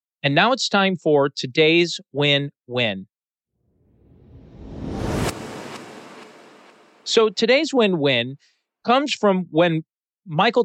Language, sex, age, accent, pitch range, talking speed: English, male, 40-59, American, 145-195 Hz, 80 wpm